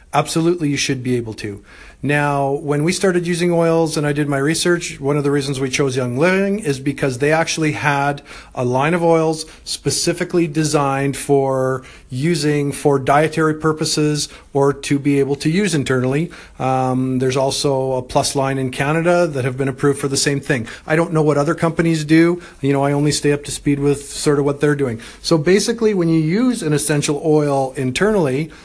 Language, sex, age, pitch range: English, male, 50-69, 140-165 Hz